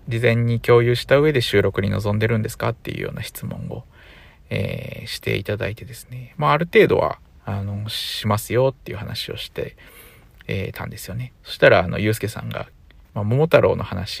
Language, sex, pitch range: Japanese, male, 100-140 Hz